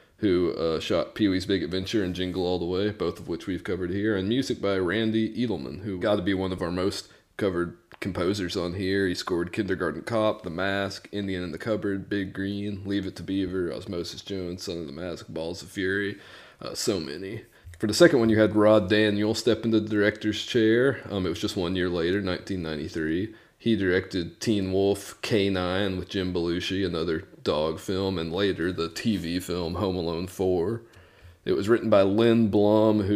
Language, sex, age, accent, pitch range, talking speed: English, male, 30-49, American, 90-105 Hz, 200 wpm